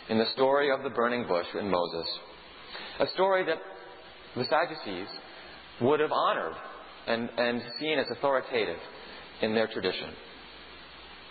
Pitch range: 105-140 Hz